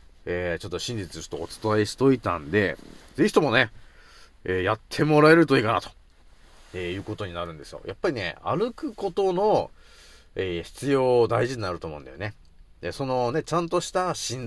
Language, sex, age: Japanese, male, 40-59